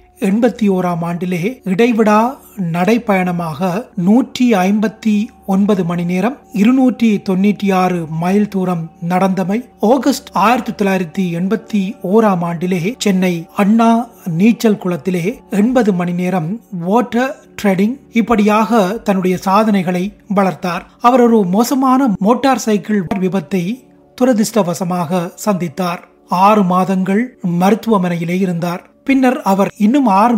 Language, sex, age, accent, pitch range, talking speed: Tamil, male, 30-49, native, 185-225 Hz, 85 wpm